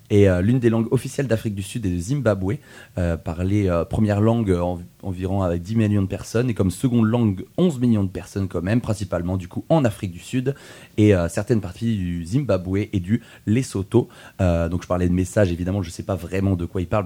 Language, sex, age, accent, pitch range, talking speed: French, male, 30-49, French, 95-120 Hz, 230 wpm